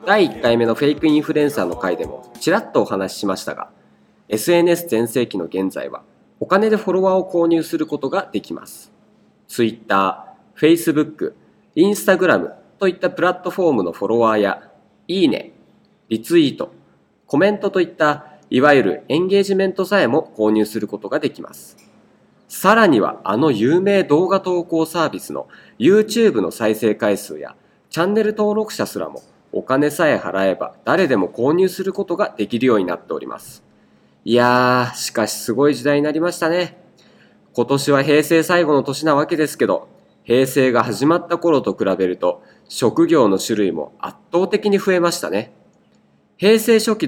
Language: Japanese